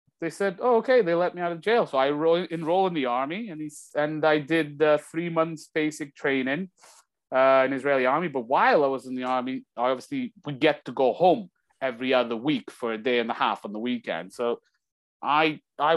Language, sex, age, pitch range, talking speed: English, male, 30-49, 120-150 Hz, 220 wpm